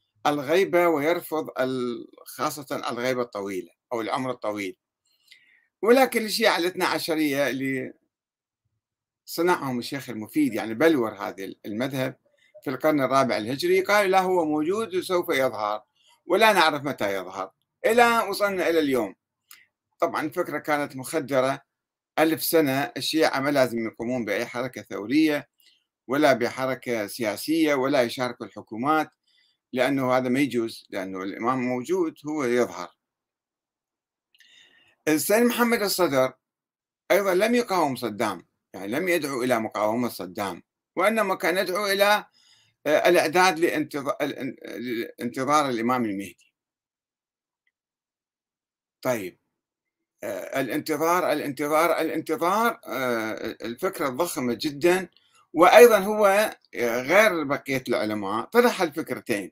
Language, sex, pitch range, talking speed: Arabic, male, 125-175 Hz, 100 wpm